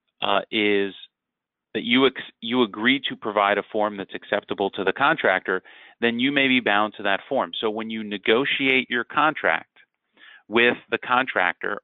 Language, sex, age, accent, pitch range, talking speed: English, male, 30-49, American, 95-110 Hz, 160 wpm